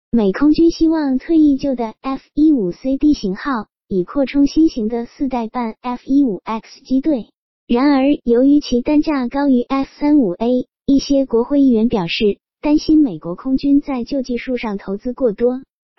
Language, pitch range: Chinese, 230-285 Hz